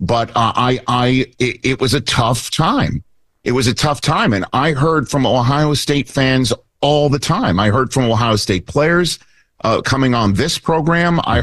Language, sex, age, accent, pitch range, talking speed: English, male, 50-69, American, 105-135 Hz, 190 wpm